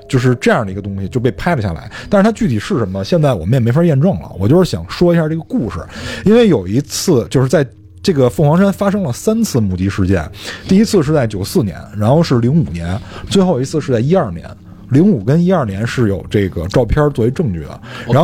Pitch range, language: 105-165 Hz, Chinese